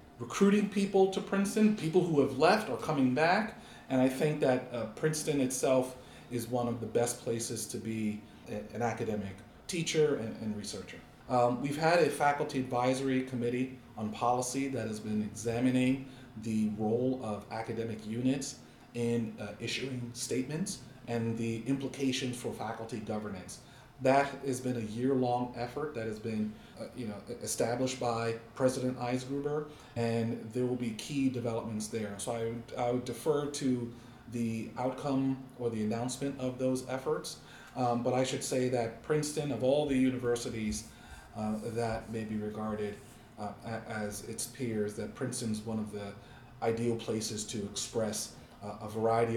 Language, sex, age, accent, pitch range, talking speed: English, male, 40-59, American, 110-130 Hz, 160 wpm